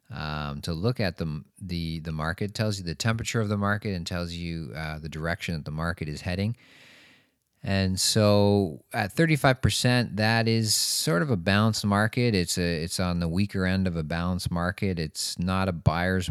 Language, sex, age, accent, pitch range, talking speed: English, male, 40-59, American, 85-105 Hz, 190 wpm